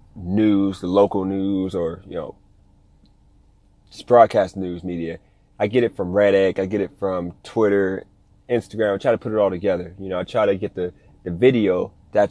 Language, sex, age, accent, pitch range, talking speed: English, male, 30-49, American, 95-115 Hz, 190 wpm